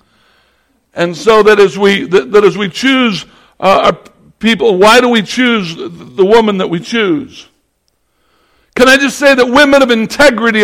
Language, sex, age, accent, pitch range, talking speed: English, male, 60-79, American, 230-290 Hz, 150 wpm